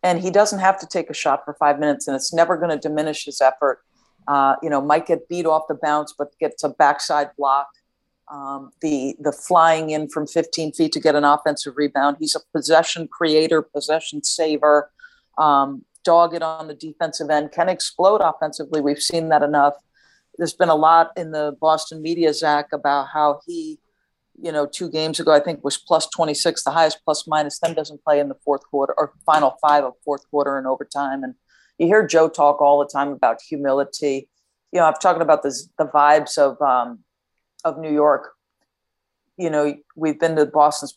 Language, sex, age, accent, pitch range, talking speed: English, female, 50-69, American, 145-165 Hz, 195 wpm